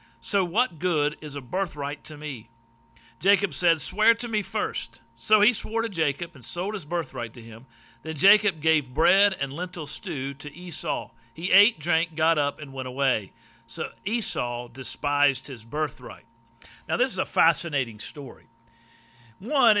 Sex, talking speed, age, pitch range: male, 165 wpm, 50-69, 140-180 Hz